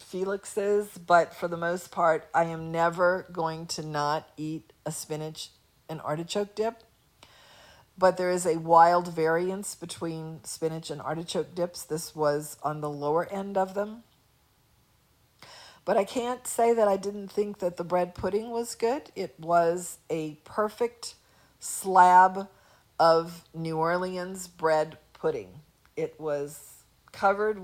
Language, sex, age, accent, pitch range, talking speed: English, female, 50-69, American, 155-195 Hz, 140 wpm